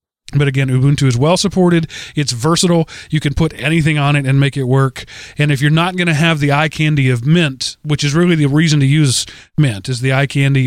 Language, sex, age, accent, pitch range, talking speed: English, male, 30-49, American, 130-160 Hz, 230 wpm